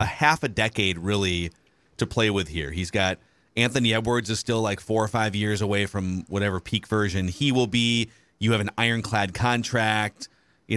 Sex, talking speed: male, 190 wpm